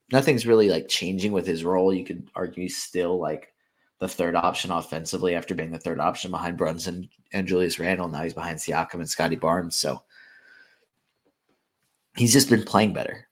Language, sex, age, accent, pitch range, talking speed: English, male, 30-49, American, 85-95 Hz, 180 wpm